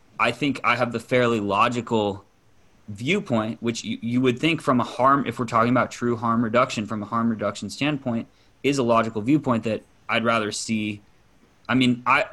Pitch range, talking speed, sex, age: 105-120 Hz, 190 wpm, male, 20-39